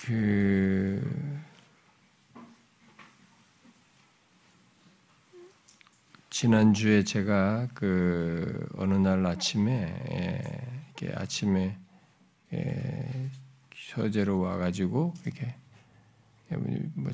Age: 50-69